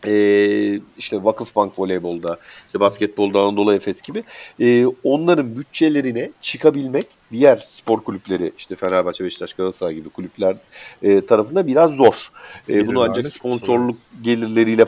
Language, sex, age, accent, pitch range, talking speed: Turkish, male, 50-69, native, 95-140 Hz, 120 wpm